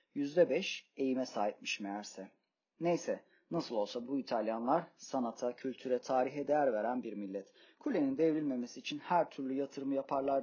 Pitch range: 120-165 Hz